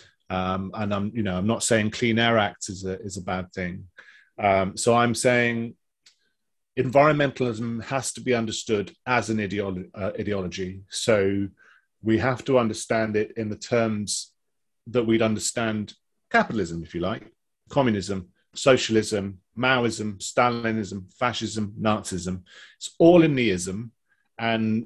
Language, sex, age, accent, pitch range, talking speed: English, male, 30-49, British, 105-125 Hz, 140 wpm